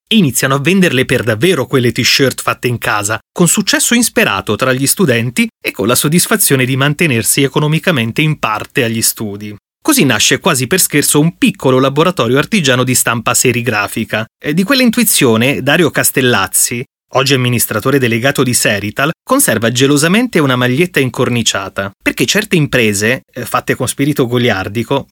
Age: 30-49